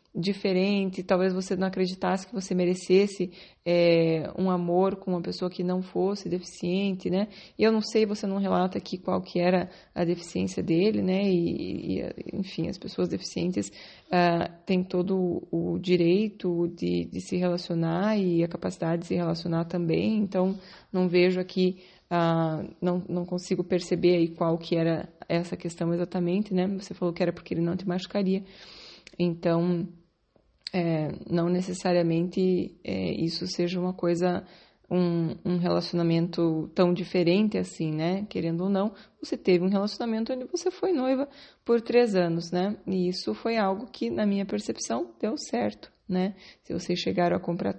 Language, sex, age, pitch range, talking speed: Portuguese, female, 20-39, 175-195 Hz, 150 wpm